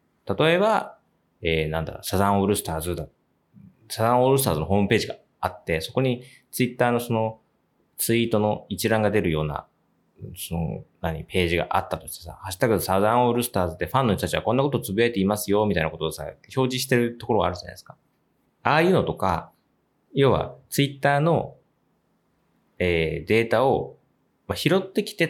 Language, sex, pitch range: Japanese, male, 90-135 Hz